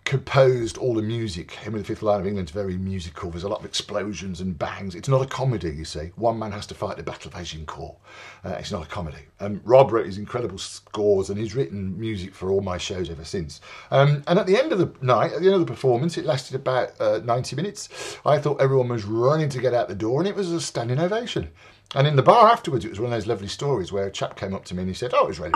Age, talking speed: 50-69, 275 wpm